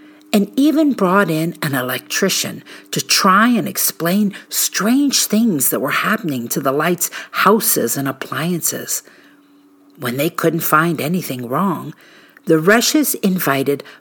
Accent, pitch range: American, 145-215 Hz